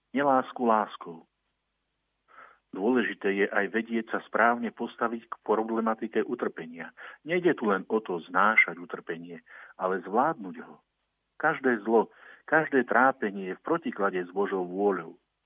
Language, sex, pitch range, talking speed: Slovak, male, 100-125 Hz, 125 wpm